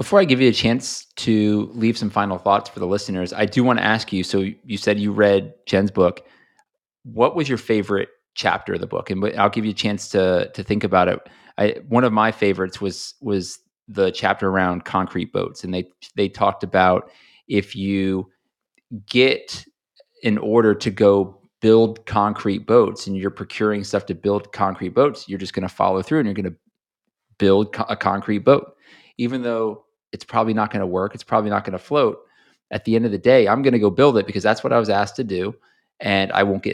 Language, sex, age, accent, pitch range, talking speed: English, male, 30-49, American, 95-115 Hz, 215 wpm